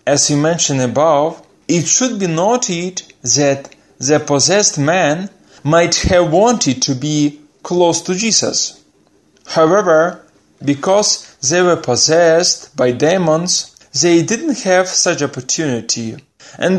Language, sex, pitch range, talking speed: Ukrainian, male, 145-190 Hz, 120 wpm